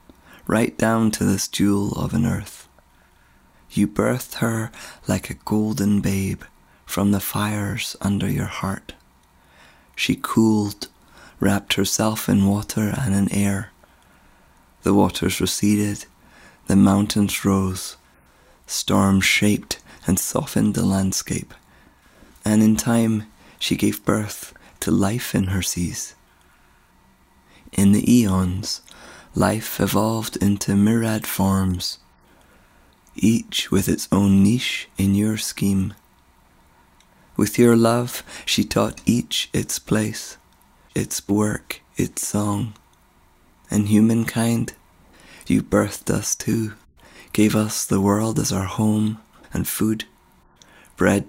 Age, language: 30-49, English